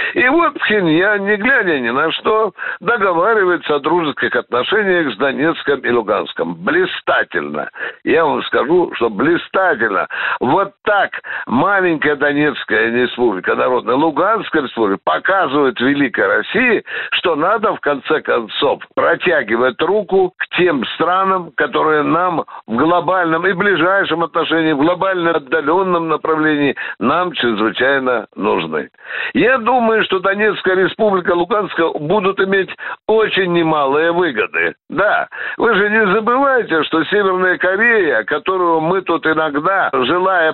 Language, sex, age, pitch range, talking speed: Russian, male, 60-79, 160-210 Hz, 120 wpm